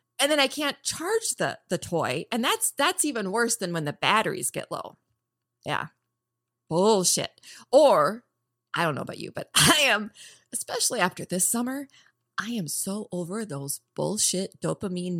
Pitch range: 145-210 Hz